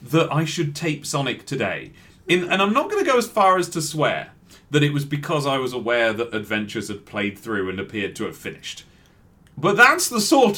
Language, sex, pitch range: English, male, 110-170 Hz